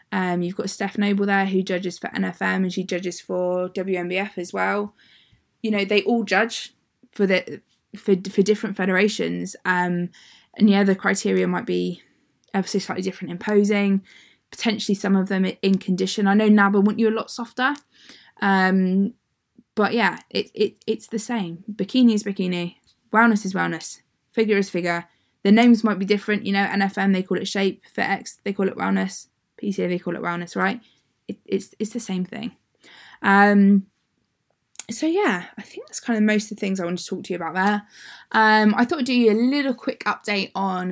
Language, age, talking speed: English, 20-39, 190 wpm